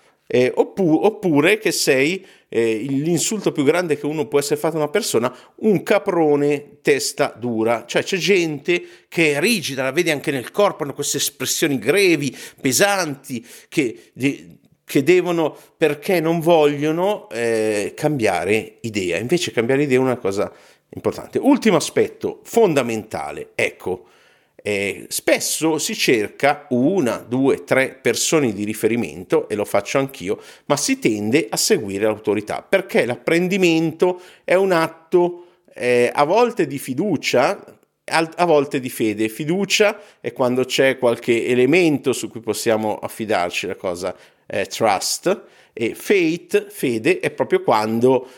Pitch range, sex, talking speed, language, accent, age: 125-190 Hz, male, 135 wpm, Italian, native, 50-69